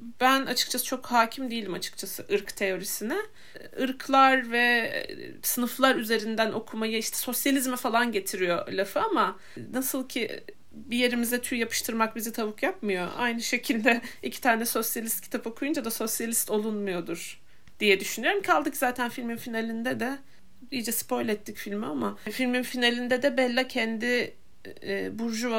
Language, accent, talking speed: Turkish, native, 130 wpm